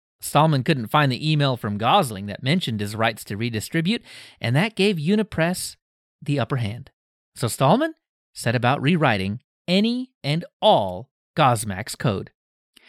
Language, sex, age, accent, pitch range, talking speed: English, male, 30-49, American, 120-185 Hz, 140 wpm